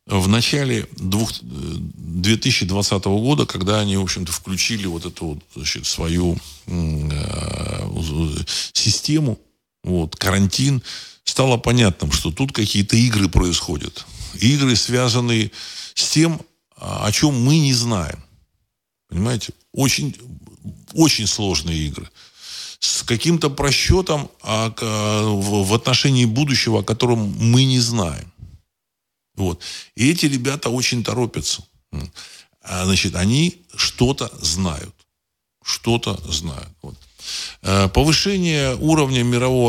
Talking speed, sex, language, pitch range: 105 wpm, male, Russian, 90-125 Hz